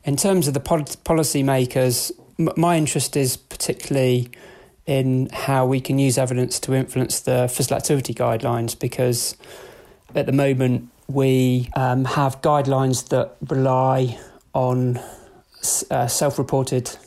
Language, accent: English, British